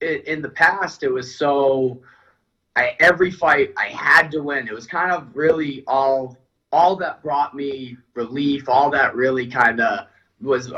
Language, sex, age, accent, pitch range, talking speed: English, male, 20-39, American, 125-155 Hz, 165 wpm